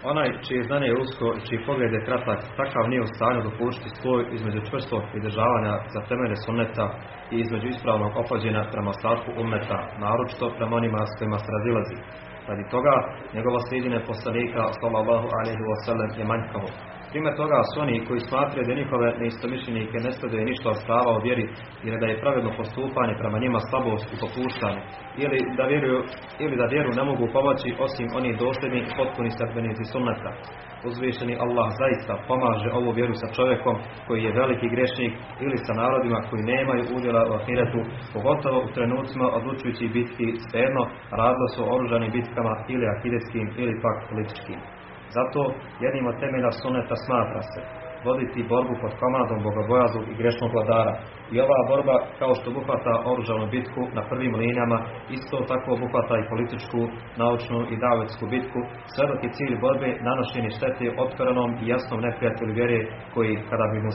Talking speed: 160 wpm